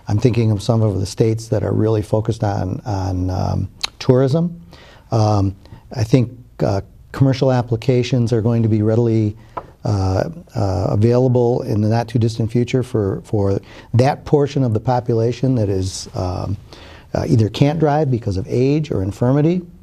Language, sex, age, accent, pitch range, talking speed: English, male, 50-69, American, 105-125 Hz, 165 wpm